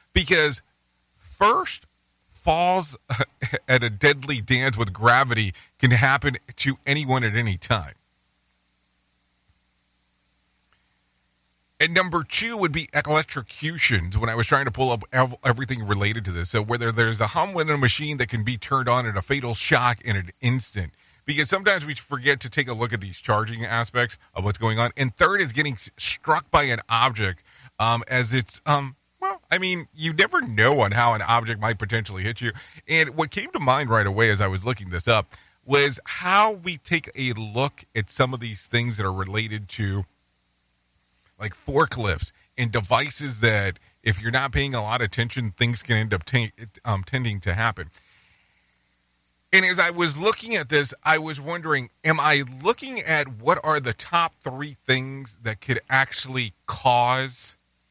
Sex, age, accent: male, 40-59, American